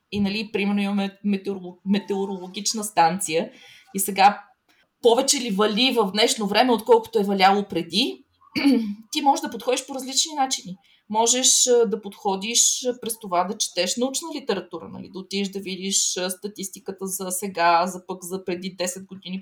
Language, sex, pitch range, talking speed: Bulgarian, female, 195-245 Hz, 150 wpm